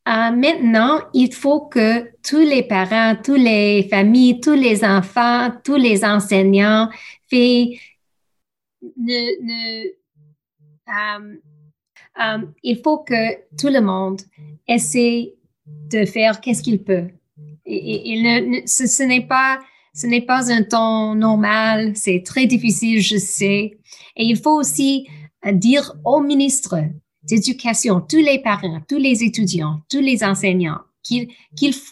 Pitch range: 195-255 Hz